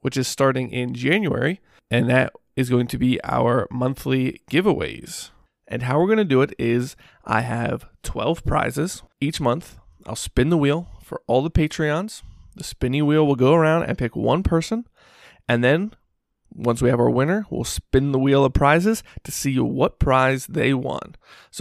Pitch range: 125-155 Hz